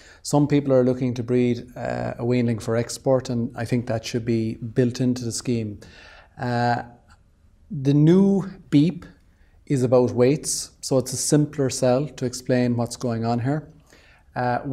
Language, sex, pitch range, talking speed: English, male, 120-140 Hz, 165 wpm